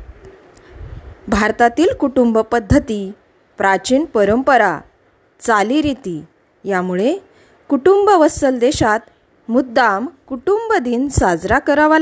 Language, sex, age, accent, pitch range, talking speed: Marathi, female, 20-39, native, 210-295 Hz, 70 wpm